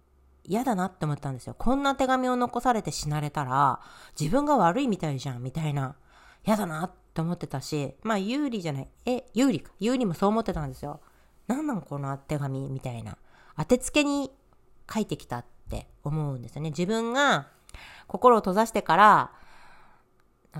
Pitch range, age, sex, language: 150-235 Hz, 40-59, female, Japanese